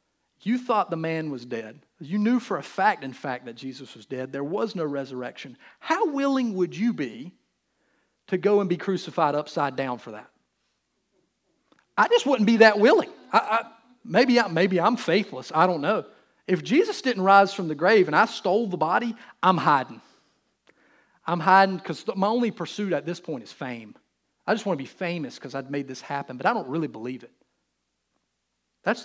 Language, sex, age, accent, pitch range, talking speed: English, male, 40-59, American, 150-225 Hz, 195 wpm